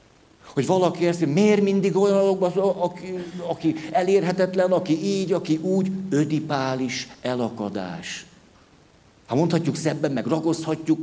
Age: 60-79